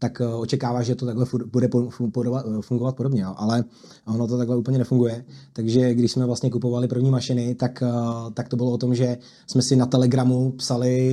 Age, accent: 20-39, native